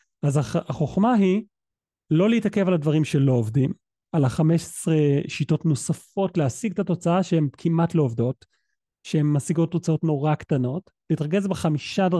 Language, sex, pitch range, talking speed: Hebrew, male, 145-180 Hz, 140 wpm